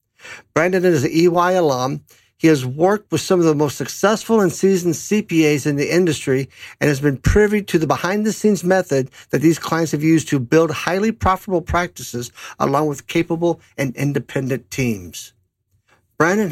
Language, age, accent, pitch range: English, 60-79, American, 125-170 Hz